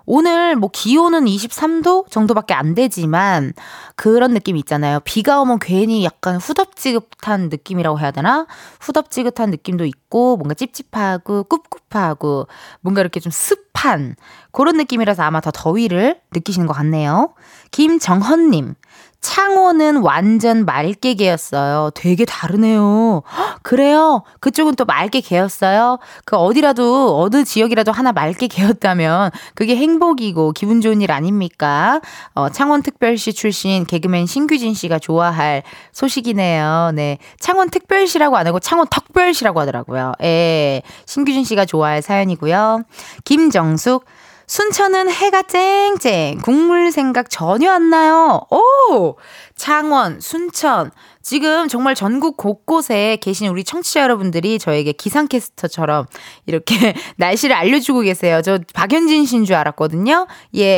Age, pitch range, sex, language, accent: 20-39, 175-295 Hz, female, Korean, native